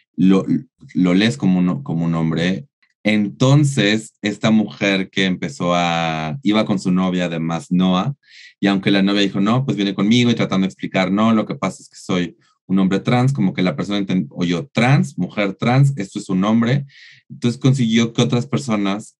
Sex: male